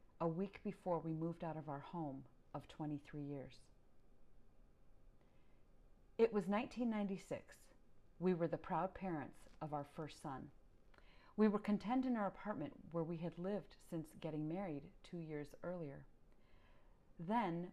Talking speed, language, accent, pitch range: 140 wpm, English, American, 155-210 Hz